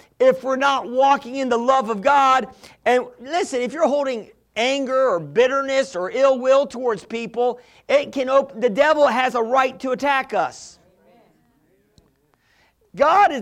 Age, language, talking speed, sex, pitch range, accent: 50-69, English, 150 wpm, male, 205-265 Hz, American